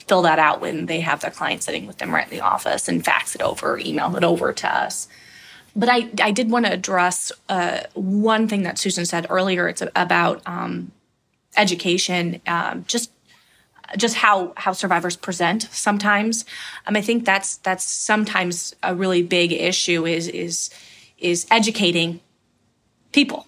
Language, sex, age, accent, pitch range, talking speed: English, female, 20-39, American, 170-200 Hz, 165 wpm